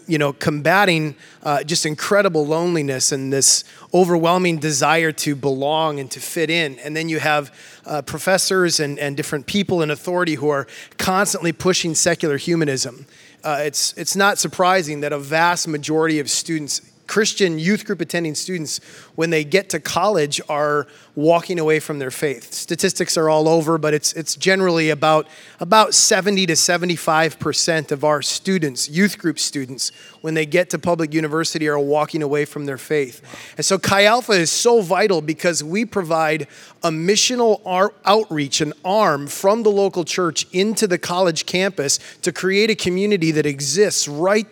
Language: English